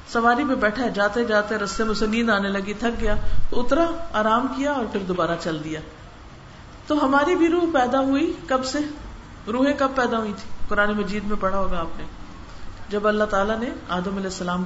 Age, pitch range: 50-69, 185-265 Hz